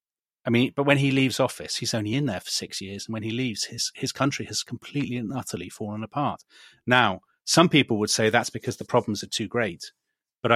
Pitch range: 105-130 Hz